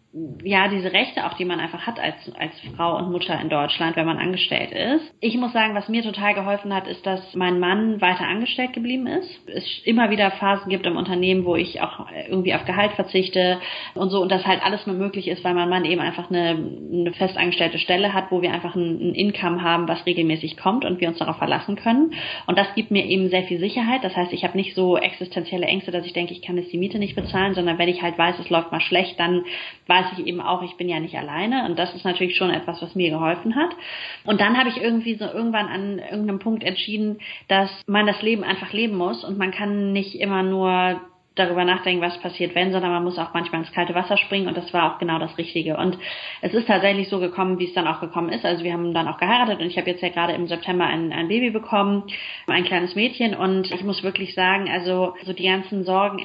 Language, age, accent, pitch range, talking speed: German, 30-49, German, 175-200 Hz, 240 wpm